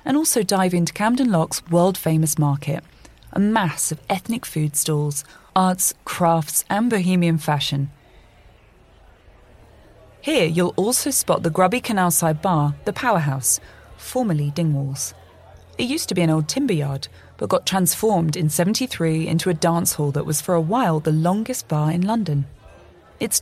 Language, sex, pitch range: English, female, 145-185 Hz